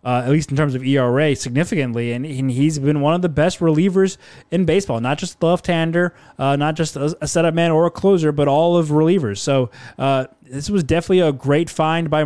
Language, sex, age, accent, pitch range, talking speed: English, male, 20-39, American, 140-160 Hz, 220 wpm